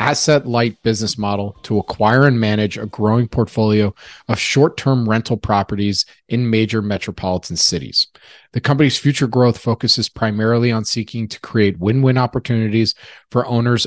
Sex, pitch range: male, 105-125 Hz